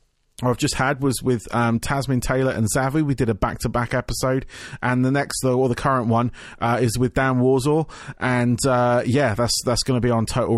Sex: male